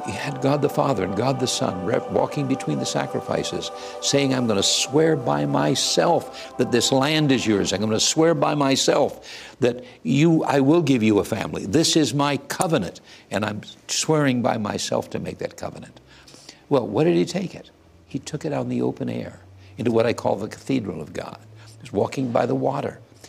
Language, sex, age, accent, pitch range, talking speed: English, male, 60-79, American, 90-140 Hz, 205 wpm